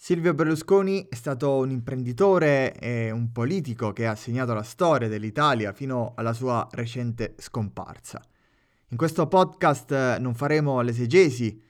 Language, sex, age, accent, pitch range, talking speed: Italian, male, 20-39, native, 115-150 Hz, 135 wpm